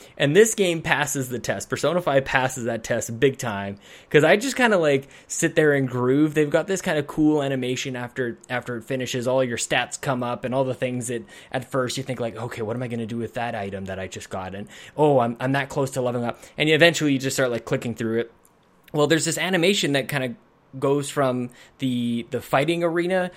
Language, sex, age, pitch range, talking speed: English, male, 20-39, 120-175 Hz, 240 wpm